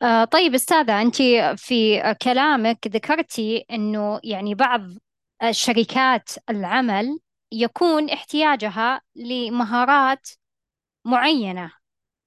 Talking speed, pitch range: 75 wpm, 210-260 Hz